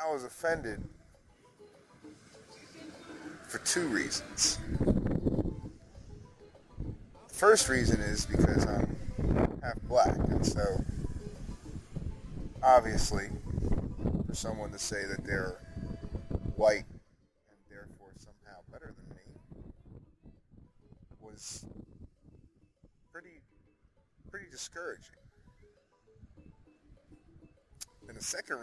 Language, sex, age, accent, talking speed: English, male, 30-49, American, 80 wpm